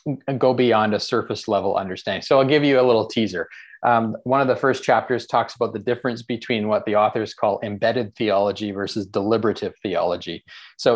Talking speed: 190 wpm